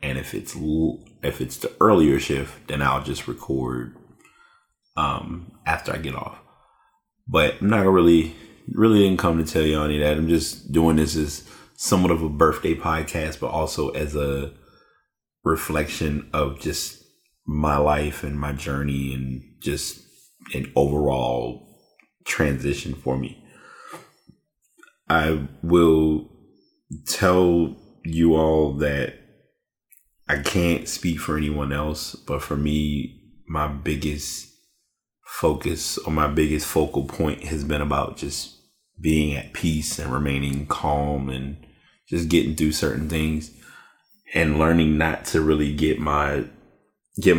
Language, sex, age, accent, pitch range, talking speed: English, male, 30-49, American, 75-80 Hz, 135 wpm